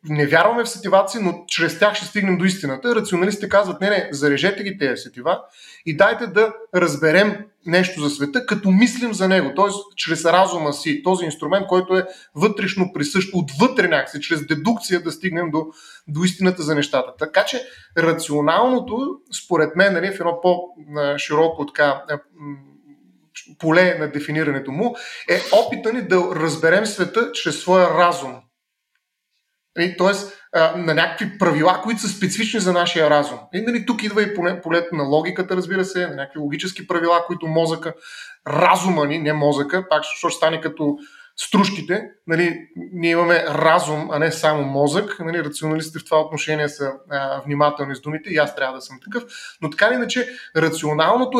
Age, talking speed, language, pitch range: 30-49, 160 wpm, Bulgarian, 155-200 Hz